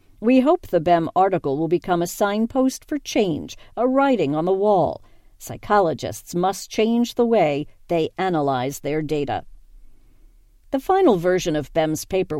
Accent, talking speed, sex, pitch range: American, 150 wpm, female, 160-240 Hz